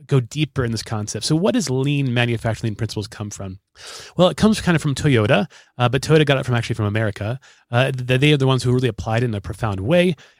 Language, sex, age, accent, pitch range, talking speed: English, male, 30-49, American, 120-155 Hz, 250 wpm